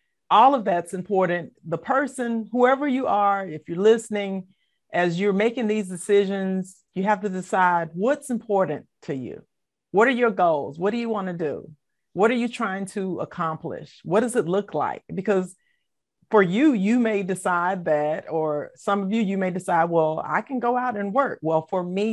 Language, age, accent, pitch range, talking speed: English, 40-59, American, 170-210 Hz, 190 wpm